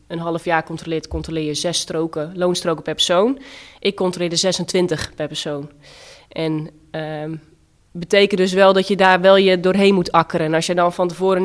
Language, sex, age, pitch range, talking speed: Dutch, female, 20-39, 170-200 Hz, 190 wpm